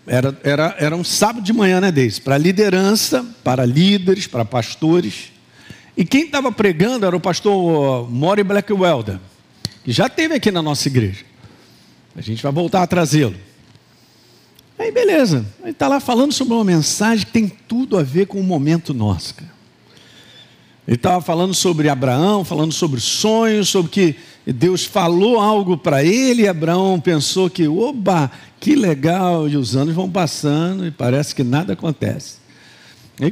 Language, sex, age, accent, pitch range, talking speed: Portuguese, male, 50-69, Brazilian, 140-200 Hz, 160 wpm